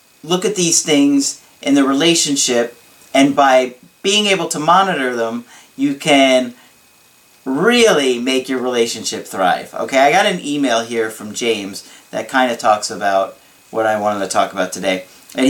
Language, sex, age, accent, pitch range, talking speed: English, male, 40-59, American, 120-180 Hz, 165 wpm